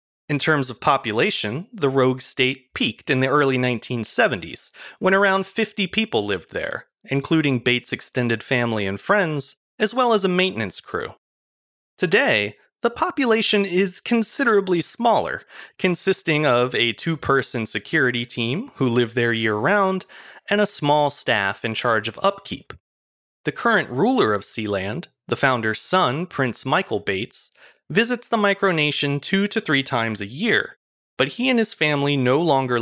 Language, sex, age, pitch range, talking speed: English, male, 30-49, 125-195 Hz, 150 wpm